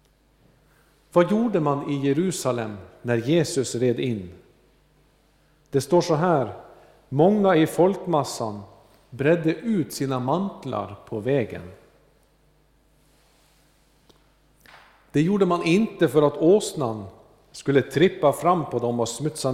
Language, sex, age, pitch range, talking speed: Swedish, male, 50-69, 120-165 Hz, 110 wpm